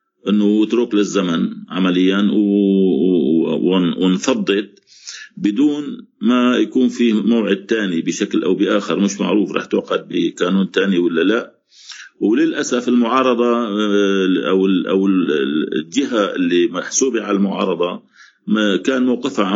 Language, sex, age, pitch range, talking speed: Arabic, male, 50-69, 95-125 Hz, 100 wpm